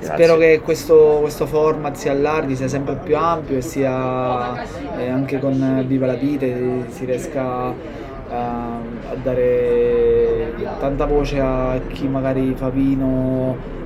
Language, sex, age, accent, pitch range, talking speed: Italian, male, 20-39, native, 130-155 Hz, 135 wpm